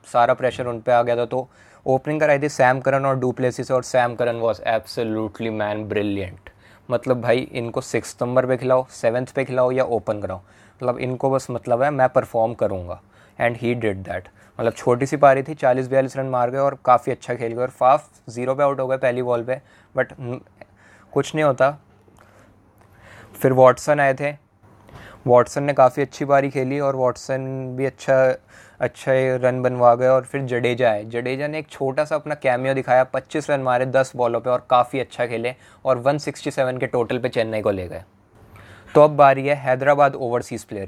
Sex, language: male, English